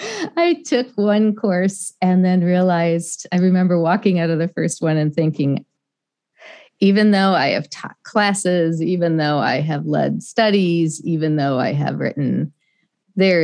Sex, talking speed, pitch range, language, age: female, 155 wpm, 150-180 Hz, English, 40-59